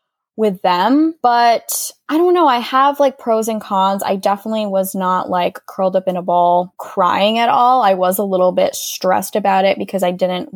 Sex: female